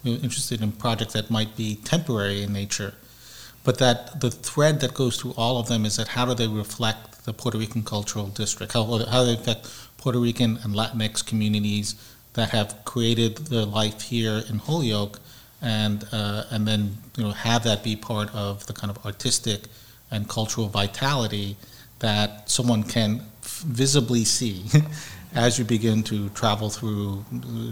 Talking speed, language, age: 170 wpm, English, 40-59